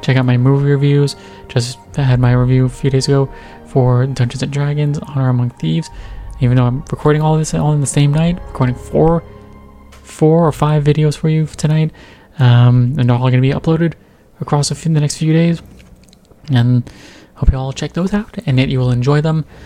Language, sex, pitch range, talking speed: English, male, 120-155 Hz, 210 wpm